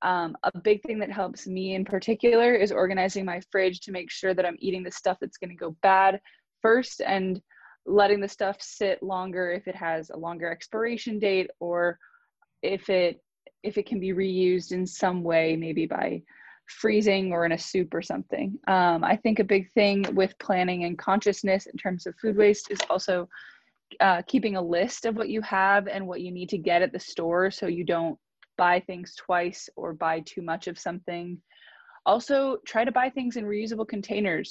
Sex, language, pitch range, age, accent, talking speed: female, English, 175-205 Hz, 20-39, American, 200 wpm